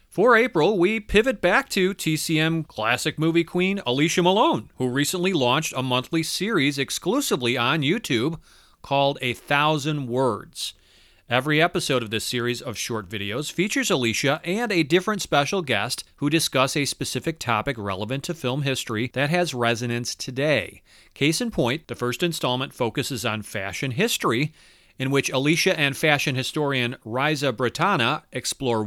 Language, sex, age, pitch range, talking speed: English, male, 30-49, 120-160 Hz, 150 wpm